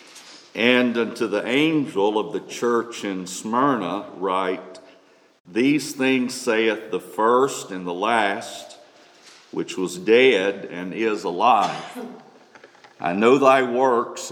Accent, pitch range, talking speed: American, 100-135 Hz, 115 wpm